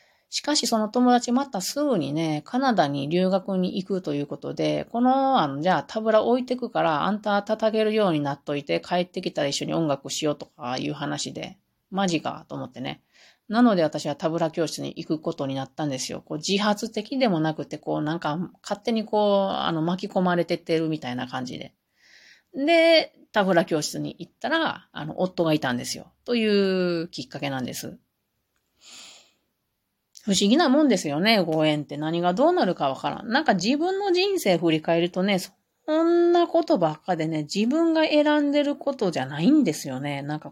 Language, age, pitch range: Japanese, 30-49, 155-245 Hz